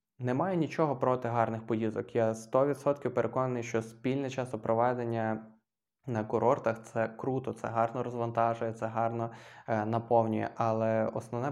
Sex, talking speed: male, 125 wpm